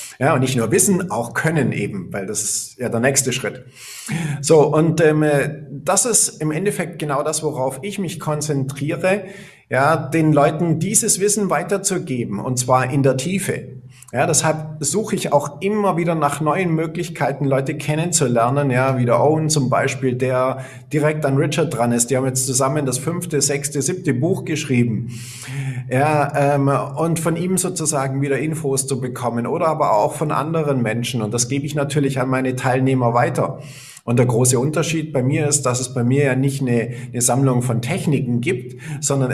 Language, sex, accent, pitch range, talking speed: German, male, German, 130-155 Hz, 180 wpm